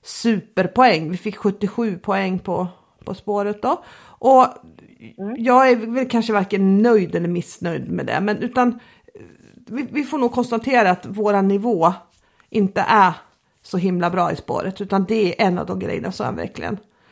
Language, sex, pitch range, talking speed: Swedish, female, 205-255 Hz, 165 wpm